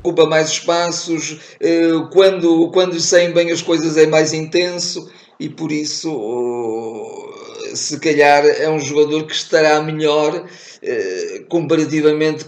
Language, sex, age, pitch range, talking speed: Portuguese, male, 50-69, 150-170 Hz, 115 wpm